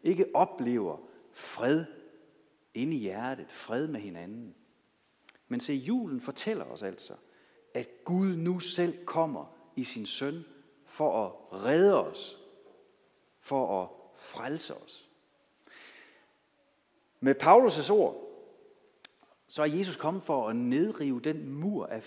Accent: native